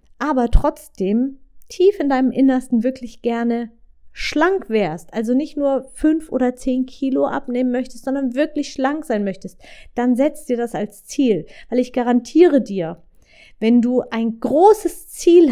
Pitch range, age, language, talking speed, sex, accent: 210-270 Hz, 30-49, German, 150 wpm, female, German